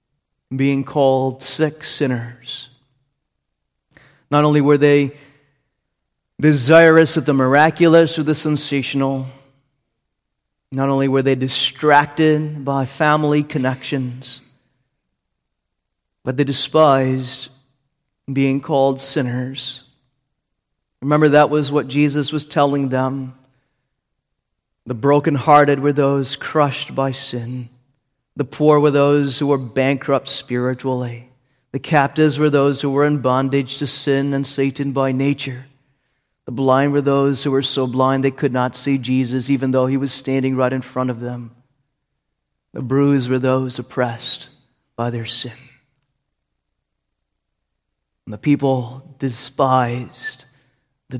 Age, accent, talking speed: 30-49, American, 120 wpm